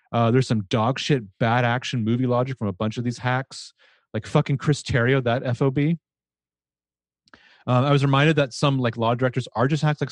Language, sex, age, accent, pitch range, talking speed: English, male, 30-49, American, 115-150 Hz, 200 wpm